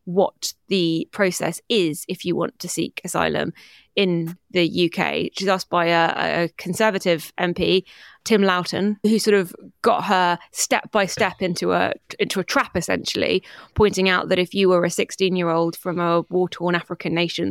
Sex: female